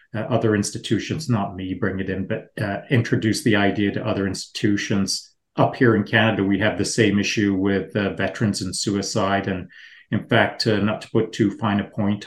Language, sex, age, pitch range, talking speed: English, male, 30-49, 100-115 Hz, 200 wpm